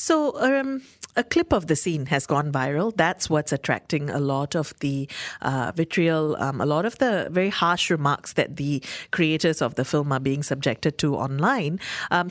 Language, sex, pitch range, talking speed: English, female, 145-185 Hz, 190 wpm